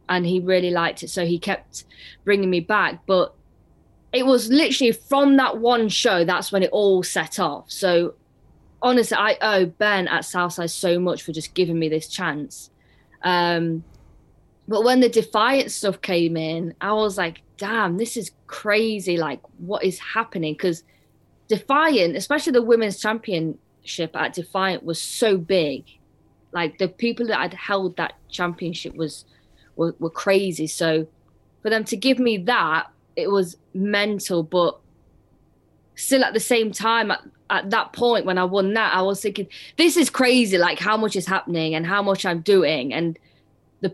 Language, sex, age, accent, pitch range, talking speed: English, female, 20-39, British, 170-220 Hz, 170 wpm